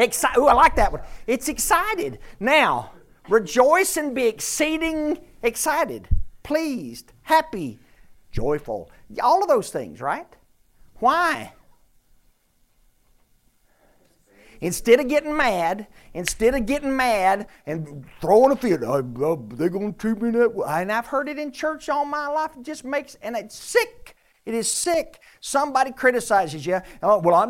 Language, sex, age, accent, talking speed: English, male, 50-69, American, 140 wpm